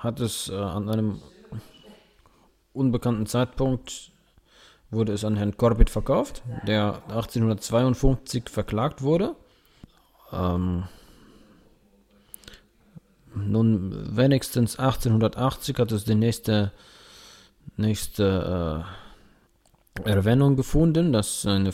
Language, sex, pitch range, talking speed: German, male, 100-130 Hz, 85 wpm